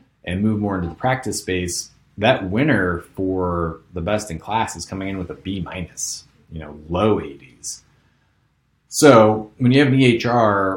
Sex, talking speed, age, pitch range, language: male, 175 wpm, 30-49, 85-110 Hz, English